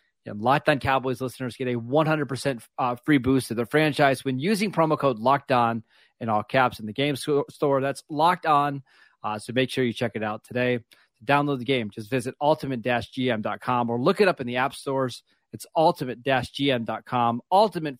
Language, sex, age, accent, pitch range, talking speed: English, male, 30-49, American, 120-145 Hz, 190 wpm